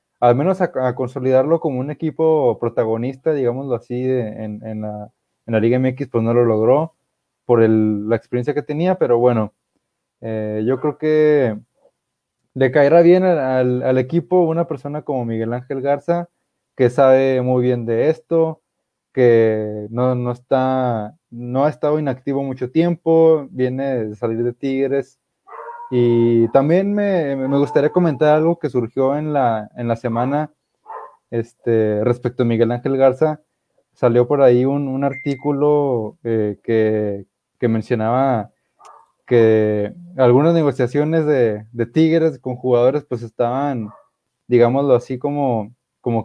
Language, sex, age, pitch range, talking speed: Spanish, male, 20-39, 120-150 Hz, 145 wpm